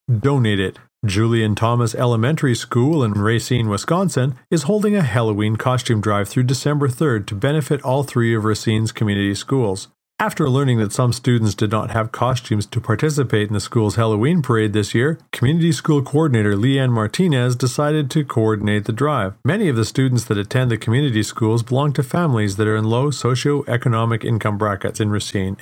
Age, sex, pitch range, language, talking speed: 40-59, male, 110-140 Hz, English, 175 wpm